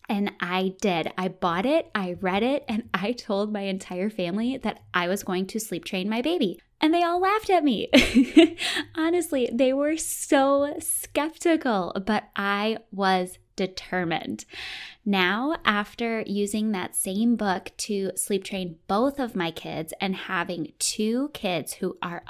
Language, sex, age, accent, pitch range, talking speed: English, female, 20-39, American, 190-235 Hz, 155 wpm